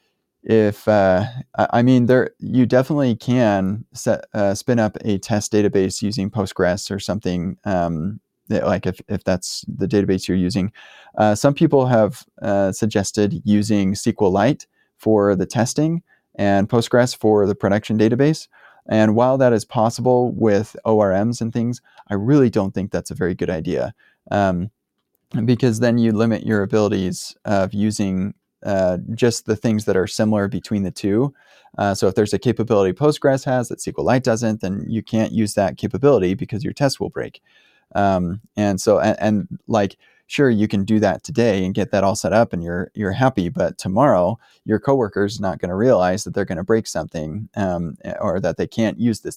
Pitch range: 95-115 Hz